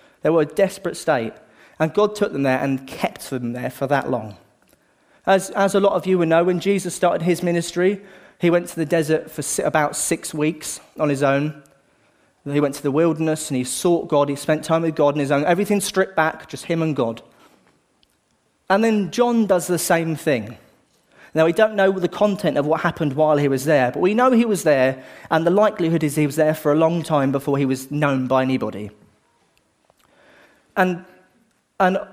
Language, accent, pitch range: English, British, 145-185 Hz